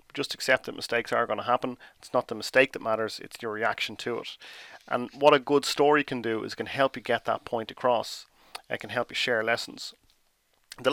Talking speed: 225 wpm